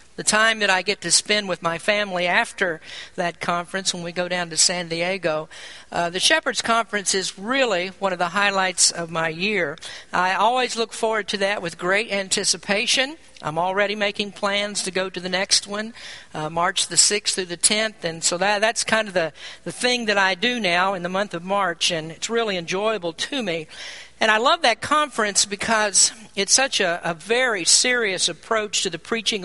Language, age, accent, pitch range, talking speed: English, 50-69, American, 175-220 Hz, 200 wpm